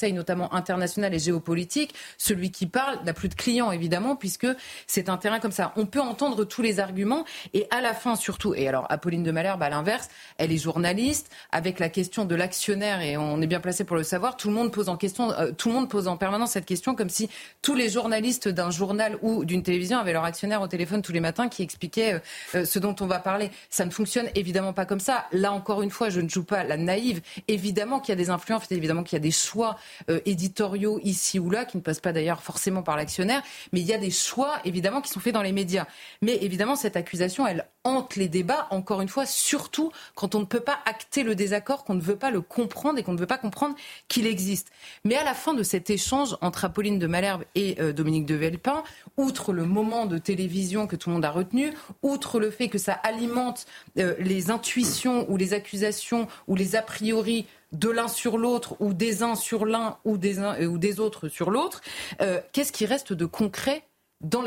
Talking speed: 235 wpm